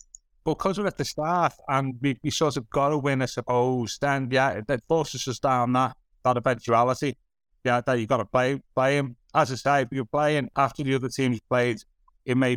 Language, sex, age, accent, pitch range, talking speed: English, male, 30-49, British, 120-165 Hz, 215 wpm